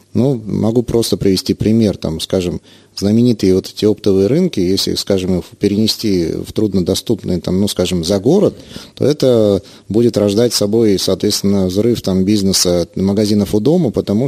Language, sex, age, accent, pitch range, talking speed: Russian, male, 30-49, native, 100-120 Hz, 150 wpm